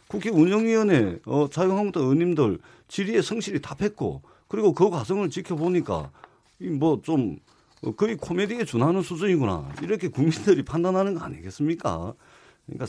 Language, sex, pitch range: Korean, male, 135-185 Hz